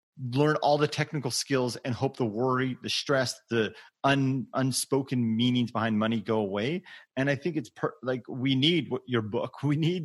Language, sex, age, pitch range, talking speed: English, male, 30-49, 120-145 Hz, 190 wpm